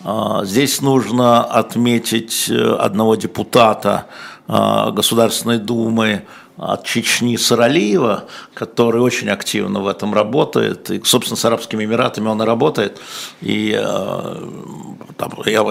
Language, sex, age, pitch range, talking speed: Russian, male, 60-79, 110-125 Hz, 100 wpm